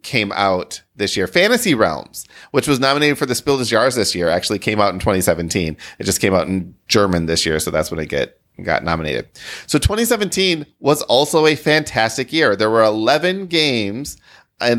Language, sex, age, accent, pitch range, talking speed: English, male, 30-49, American, 100-140 Hz, 195 wpm